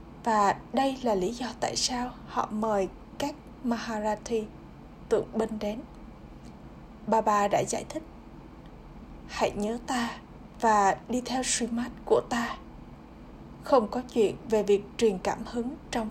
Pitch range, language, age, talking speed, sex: 210-245 Hz, Vietnamese, 20-39, 140 wpm, female